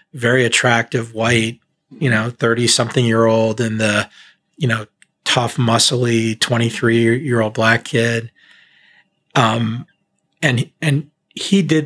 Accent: American